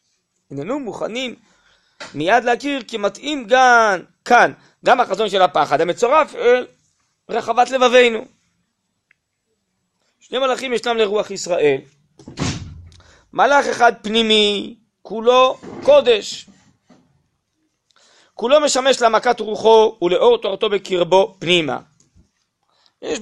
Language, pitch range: Hebrew, 185-255 Hz